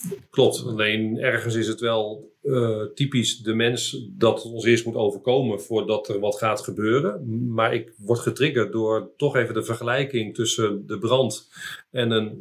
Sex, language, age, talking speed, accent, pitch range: male, Dutch, 40-59, 170 wpm, Dutch, 115-145 Hz